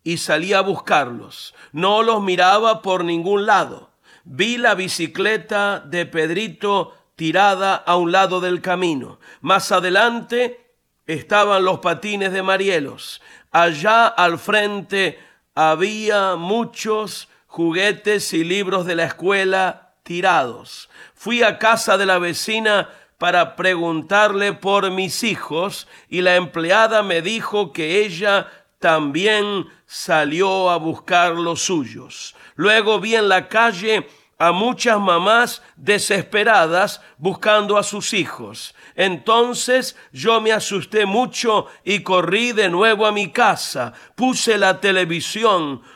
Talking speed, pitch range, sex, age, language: 120 wpm, 175-215 Hz, male, 50-69, Spanish